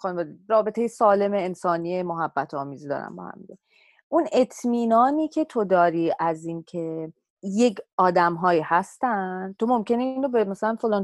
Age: 30-49